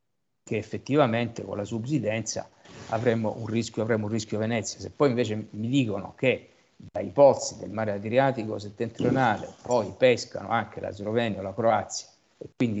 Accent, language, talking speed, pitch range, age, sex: native, Italian, 160 wpm, 105-135 Hz, 50-69, male